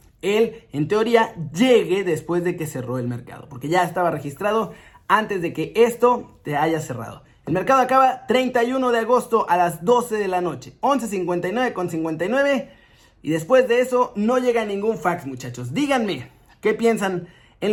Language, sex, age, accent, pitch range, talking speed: Spanish, male, 30-49, Mexican, 165-235 Hz, 165 wpm